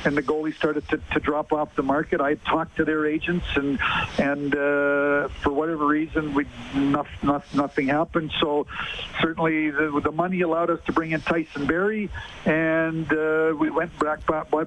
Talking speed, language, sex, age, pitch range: 180 wpm, English, male, 50-69, 145-160 Hz